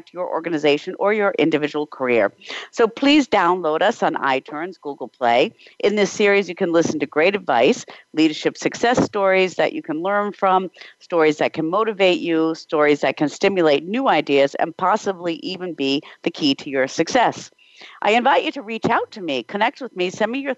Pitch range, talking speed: 150-210 Hz, 190 wpm